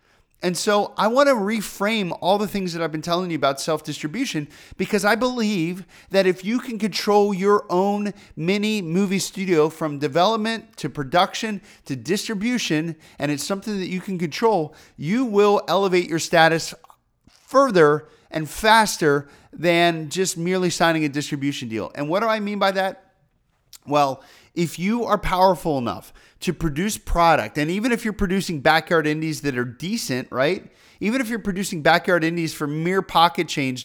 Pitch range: 150-195 Hz